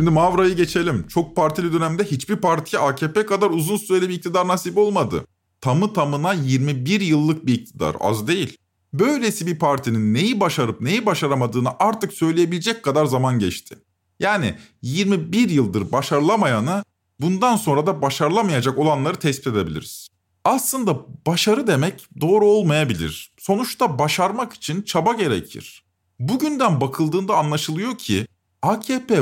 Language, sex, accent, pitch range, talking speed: Turkish, male, native, 130-210 Hz, 125 wpm